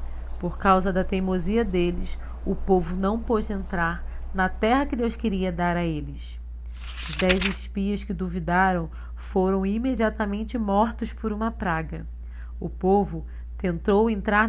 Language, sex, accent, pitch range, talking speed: Portuguese, female, Brazilian, 175-235 Hz, 135 wpm